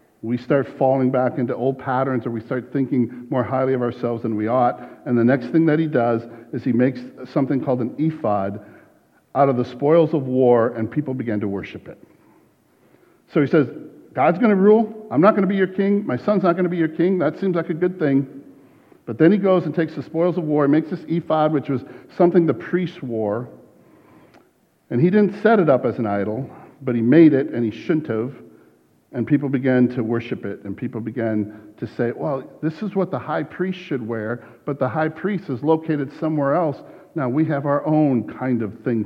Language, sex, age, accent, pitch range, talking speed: English, male, 50-69, American, 115-155 Hz, 225 wpm